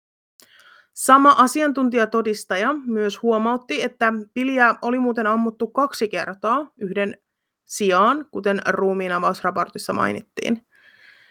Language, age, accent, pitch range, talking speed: Finnish, 30-49, native, 195-245 Hz, 90 wpm